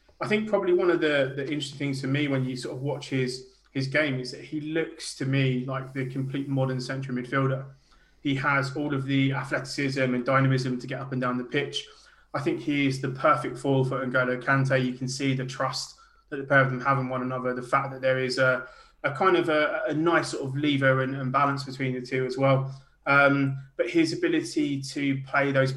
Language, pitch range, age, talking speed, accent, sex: English, 130-140 Hz, 20-39, 235 wpm, British, male